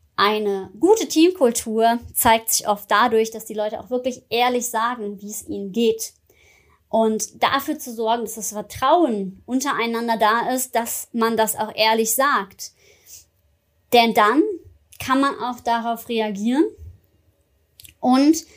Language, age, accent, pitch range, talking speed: German, 20-39, German, 225-275 Hz, 135 wpm